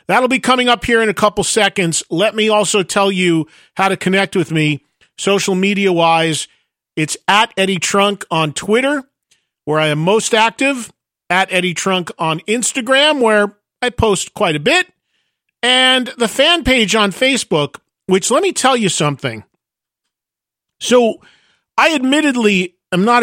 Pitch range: 165-235 Hz